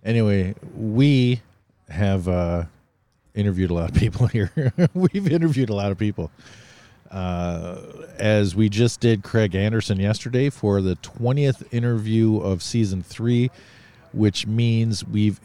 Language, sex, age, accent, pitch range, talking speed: English, male, 40-59, American, 95-115 Hz, 130 wpm